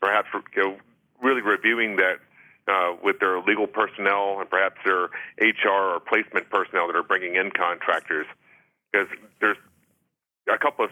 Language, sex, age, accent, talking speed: English, male, 40-59, American, 155 wpm